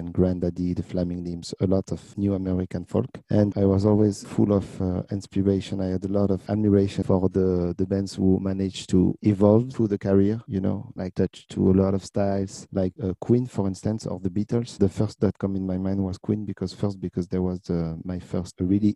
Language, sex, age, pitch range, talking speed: English, male, 40-59, 90-105 Hz, 225 wpm